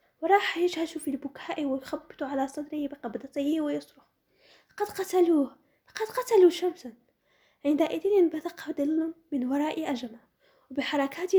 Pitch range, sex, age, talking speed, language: 275-350 Hz, female, 10-29, 110 wpm, Arabic